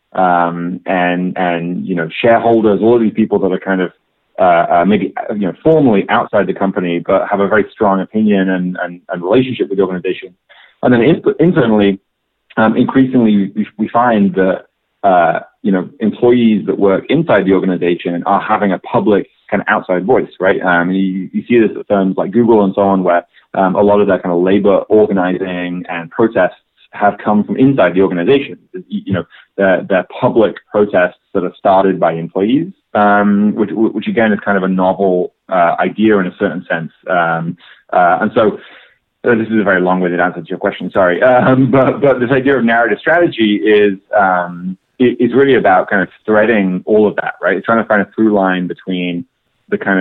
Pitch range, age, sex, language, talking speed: 90-110 Hz, 30-49, male, English, 200 wpm